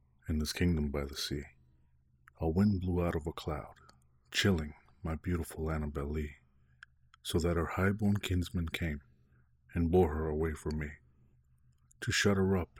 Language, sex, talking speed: English, male, 160 wpm